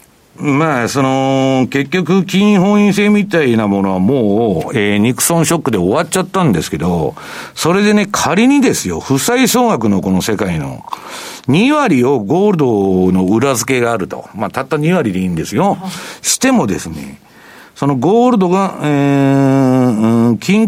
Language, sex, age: Japanese, male, 60-79